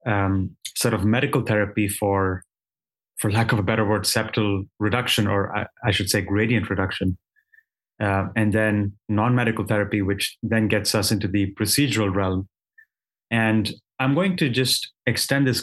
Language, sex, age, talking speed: English, male, 30-49, 155 wpm